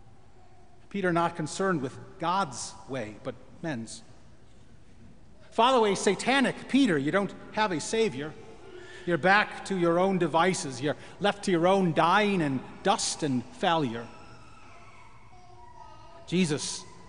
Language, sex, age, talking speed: English, male, 40-59, 120 wpm